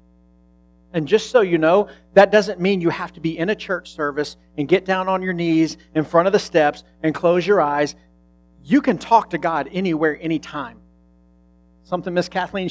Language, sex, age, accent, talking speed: English, male, 40-59, American, 195 wpm